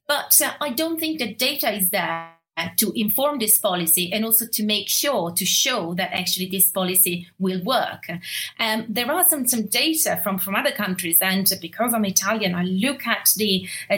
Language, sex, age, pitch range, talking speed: English, female, 30-49, 195-250 Hz, 195 wpm